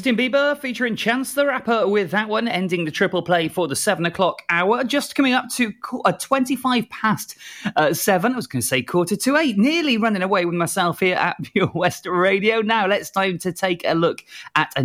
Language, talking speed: English, 210 wpm